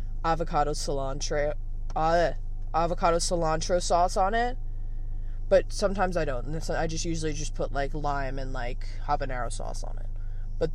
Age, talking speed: 20-39, 150 wpm